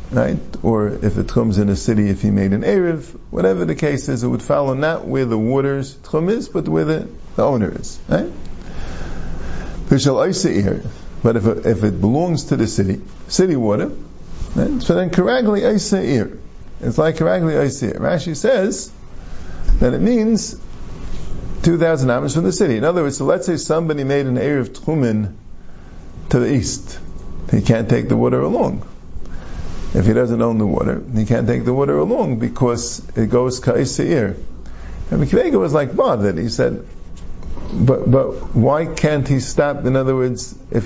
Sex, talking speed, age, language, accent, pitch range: male, 165 wpm, 50-69, English, American, 95-145 Hz